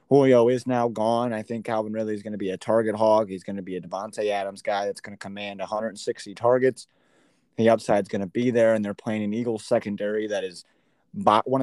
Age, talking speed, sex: 30-49, 225 wpm, male